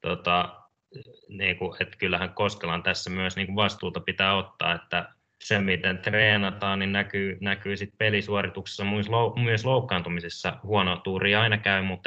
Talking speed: 145 wpm